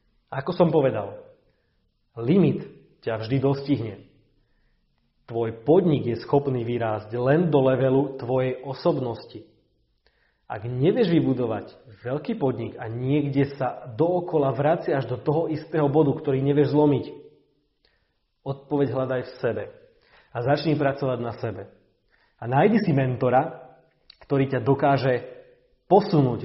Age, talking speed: 30-49, 120 wpm